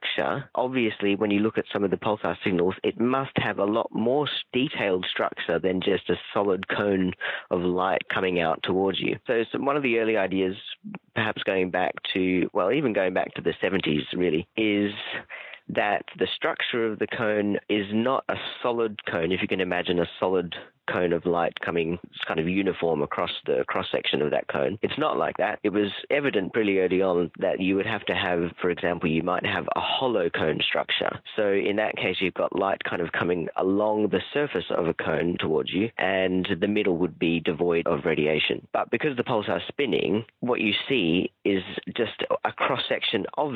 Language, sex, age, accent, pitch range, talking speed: English, male, 30-49, Australian, 90-105 Hz, 195 wpm